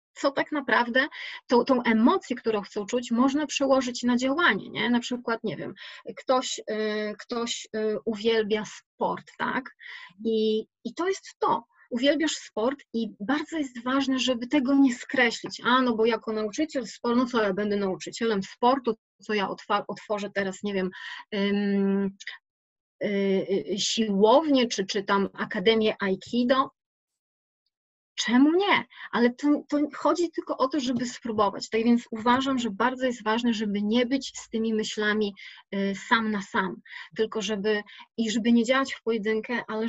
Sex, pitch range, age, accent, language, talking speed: female, 210-255 Hz, 30-49, native, Polish, 155 wpm